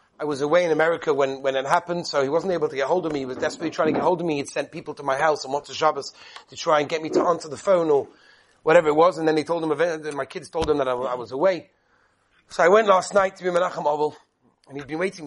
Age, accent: 30-49, British